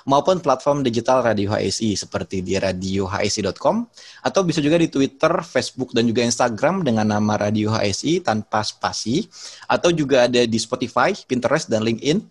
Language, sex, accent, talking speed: Indonesian, male, native, 150 wpm